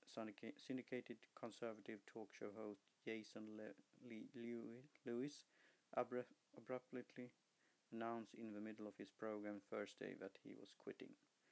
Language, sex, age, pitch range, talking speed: English, male, 50-69, 100-115 Hz, 120 wpm